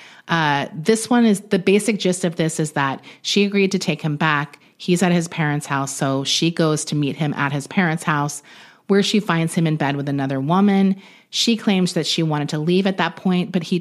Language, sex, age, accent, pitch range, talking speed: English, female, 30-49, American, 155-200 Hz, 230 wpm